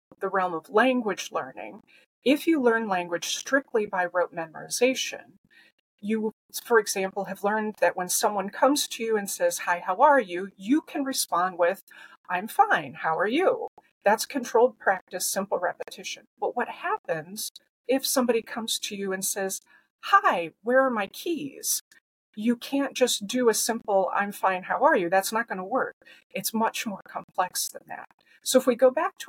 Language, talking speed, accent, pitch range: English, 180 wpm, American, 185-255 Hz